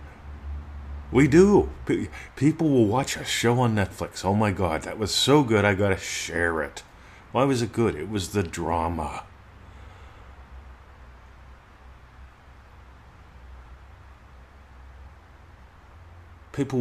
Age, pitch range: 50-69, 80-110 Hz